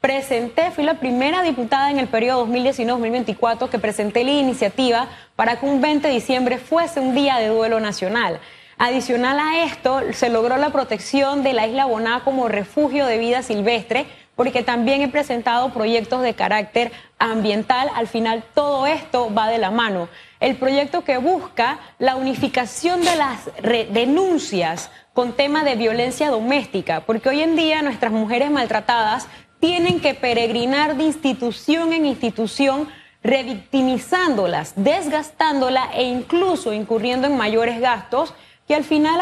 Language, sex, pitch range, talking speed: Spanish, female, 235-300 Hz, 145 wpm